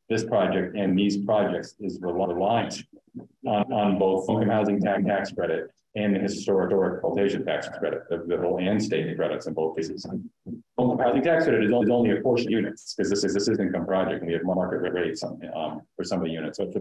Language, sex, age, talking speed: English, male, 40-59, 215 wpm